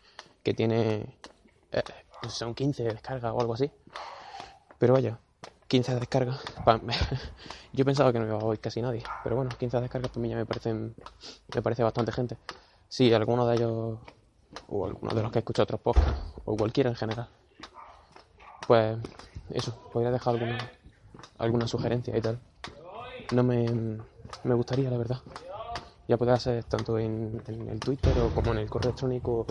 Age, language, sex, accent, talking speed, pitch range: 20-39, Spanish, male, Spanish, 170 wpm, 115-125 Hz